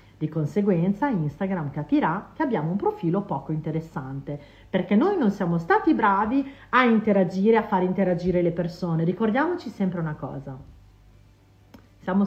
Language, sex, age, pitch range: Italian, female, 40-59, 160-225 Hz